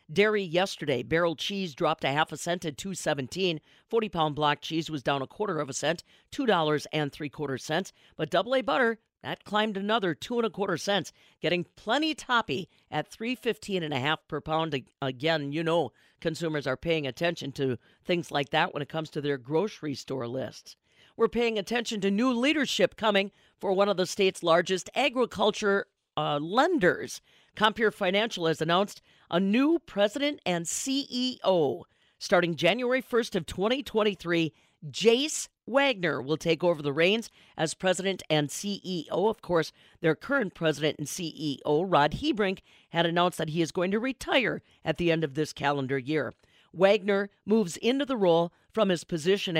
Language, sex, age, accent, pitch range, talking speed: English, female, 50-69, American, 155-210 Hz, 170 wpm